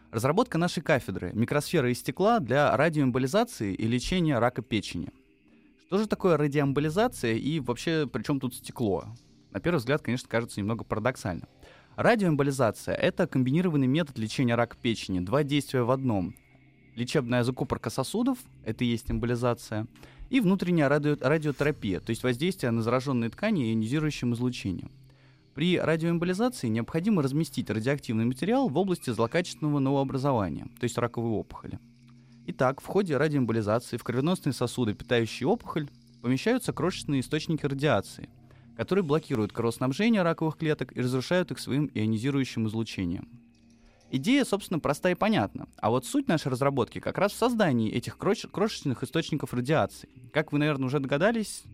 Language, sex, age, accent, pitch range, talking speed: Russian, male, 20-39, native, 120-160 Hz, 145 wpm